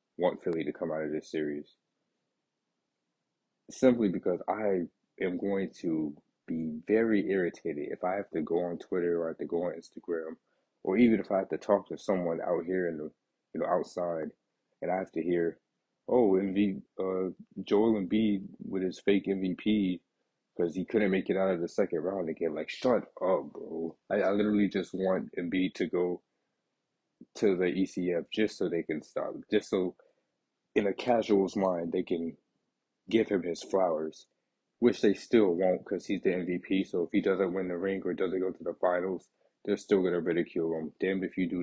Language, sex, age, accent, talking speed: English, male, 20-39, American, 195 wpm